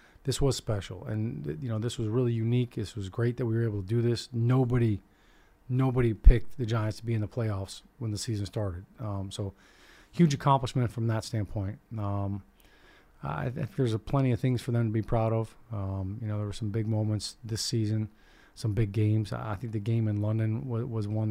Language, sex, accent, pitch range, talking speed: English, male, American, 105-120 Hz, 220 wpm